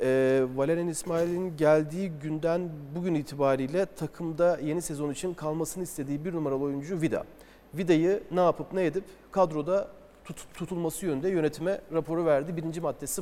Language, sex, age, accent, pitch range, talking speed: Turkish, male, 40-59, native, 140-170 Hz, 130 wpm